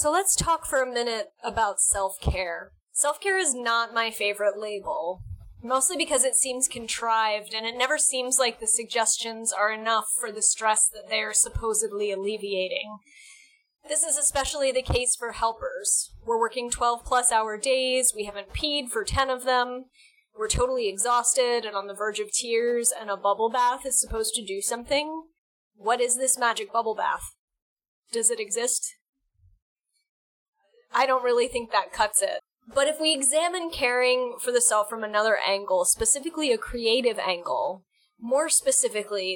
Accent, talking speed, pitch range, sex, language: American, 160 wpm, 215-295 Hz, female, English